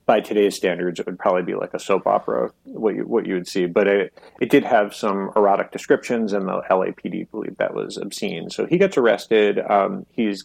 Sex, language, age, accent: male, English, 30-49, American